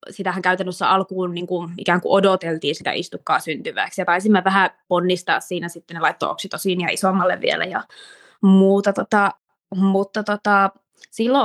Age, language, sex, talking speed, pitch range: 20-39, Finnish, female, 140 wpm, 185-220 Hz